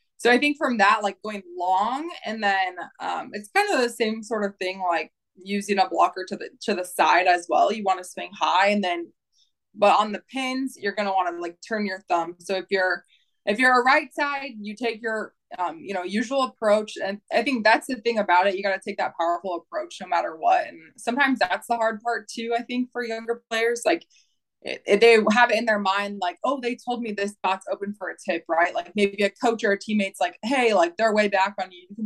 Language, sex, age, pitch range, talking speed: English, female, 20-39, 190-235 Hz, 245 wpm